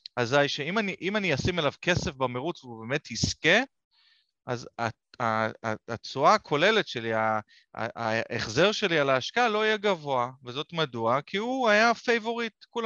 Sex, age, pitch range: male, 30-49, 120-165 Hz